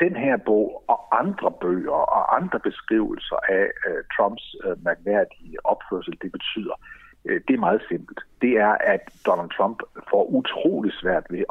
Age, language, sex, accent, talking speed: 60-79, Danish, male, native, 145 wpm